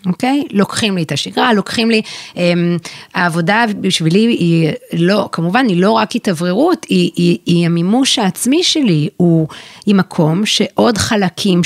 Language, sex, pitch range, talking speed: Hebrew, female, 165-230 Hz, 150 wpm